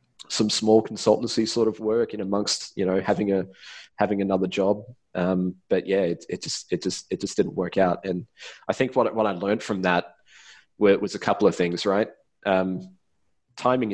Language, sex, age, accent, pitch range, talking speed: English, male, 20-39, Australian, 90-105 Hz, 195 wpm